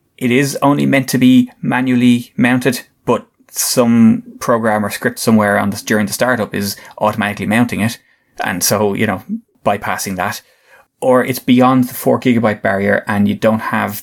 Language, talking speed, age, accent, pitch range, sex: English, 170 wpm, 20-39, Irish, 100-130 Hz, male